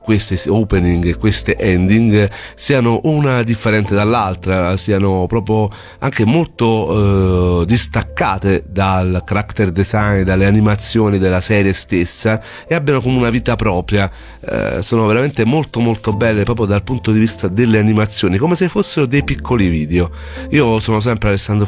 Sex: male